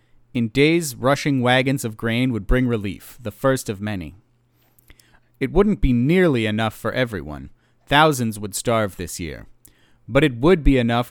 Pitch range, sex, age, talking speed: 110-140 Hz, male, 40-59, 160 wpm